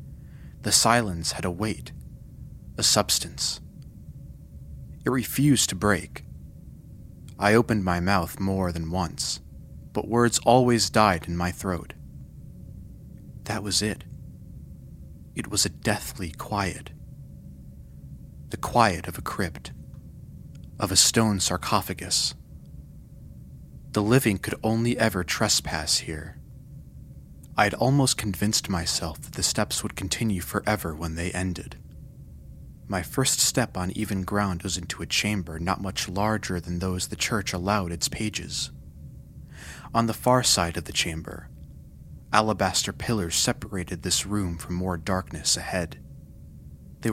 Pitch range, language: 80-105 Hz, English